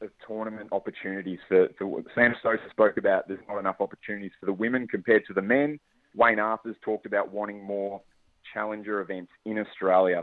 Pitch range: 95-115 Hz